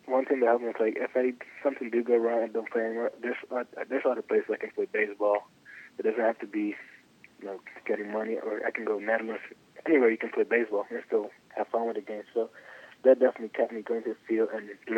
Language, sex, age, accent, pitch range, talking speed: English, male, 20-39, American, 110-125 Hz, 250 wpm